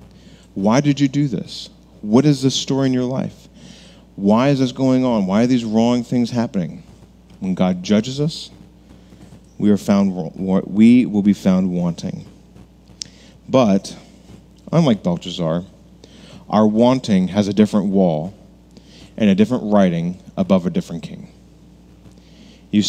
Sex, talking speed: male, 135 wpm